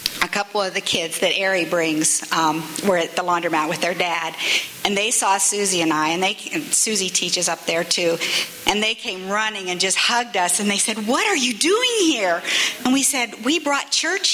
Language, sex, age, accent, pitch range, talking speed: English, female, 50-69, American, 170-215 Hz, 220 wpm